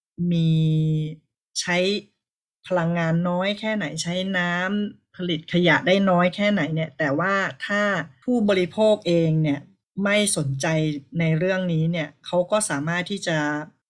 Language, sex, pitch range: Thai, female, 160-195 Hz